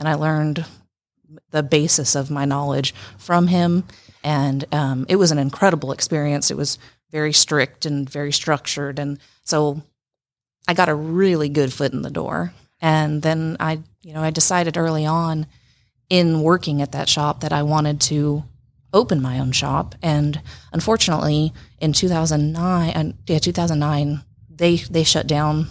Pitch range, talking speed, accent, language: 140-155 Hz, 160 wpm, American, English